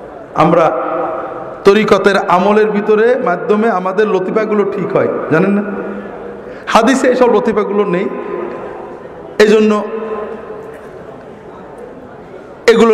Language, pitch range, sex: Bengali, 170-230 Hz, male